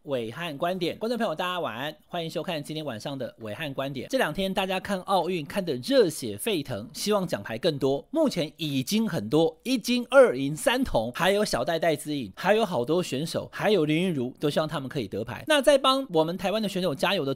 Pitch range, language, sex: 150-225 Hz, Chinese, male